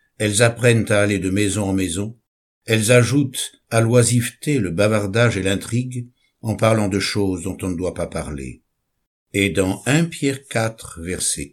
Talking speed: 165 wpm